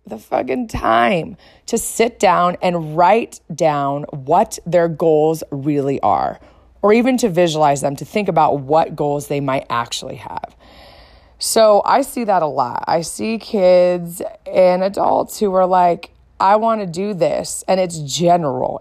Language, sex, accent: English, female, American